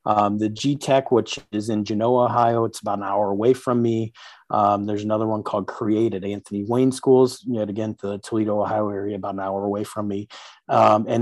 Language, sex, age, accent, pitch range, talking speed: English, male, 30-49, American, 110-130 Hz, 210 wpm